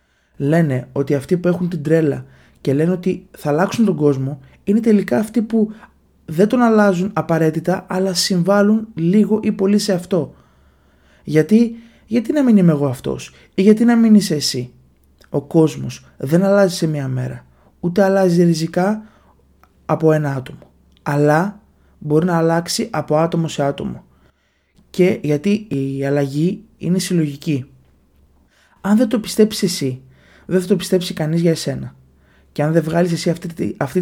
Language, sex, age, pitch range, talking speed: Greek, male, 20-39, 140-180 Hz, 155 wpm